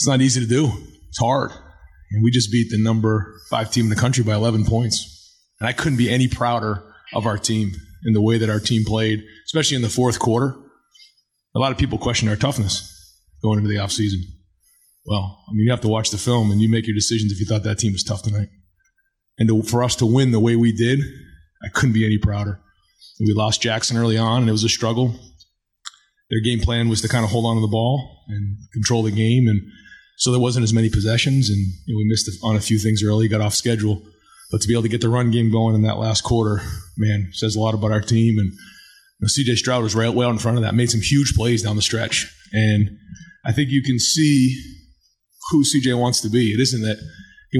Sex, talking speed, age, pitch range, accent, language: male, 240 wpm, 30-49, 105-120 Hz, American, English